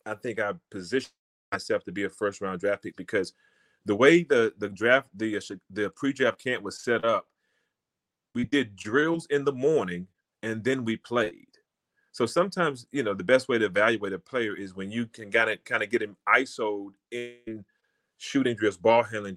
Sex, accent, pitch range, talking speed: male, American, 100-125 Hz, 190 wpm